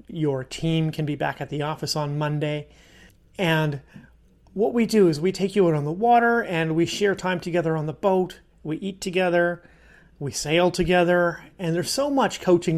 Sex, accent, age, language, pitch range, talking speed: male, American, 30-49, English, 155-185 Hz, 195 wpm